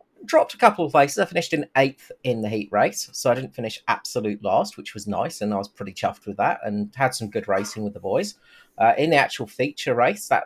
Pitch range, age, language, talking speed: 105-165 Hz, 30-49, English, 250 wpm